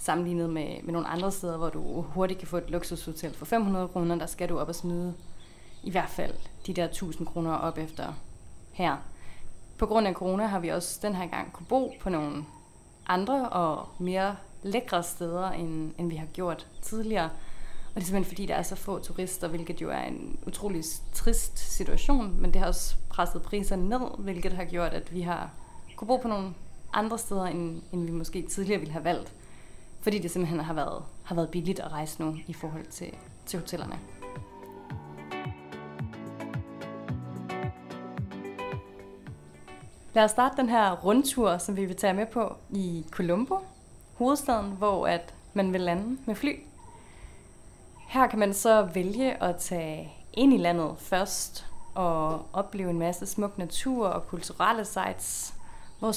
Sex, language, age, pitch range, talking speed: female, Danish, 30-49, 165-205 Hz, 170 wpm